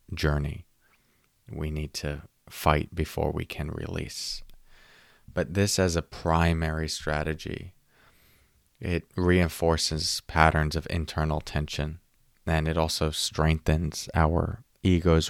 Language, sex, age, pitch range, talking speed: English, male, 30-49, 75-85 Hz, 105 wpm